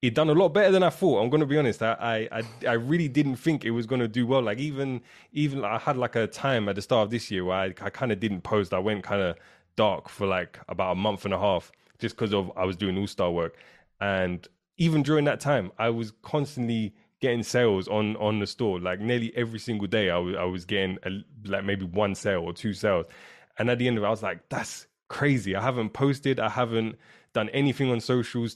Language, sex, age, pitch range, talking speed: English, male, 20-39, 100-120 Hz, 245 wpm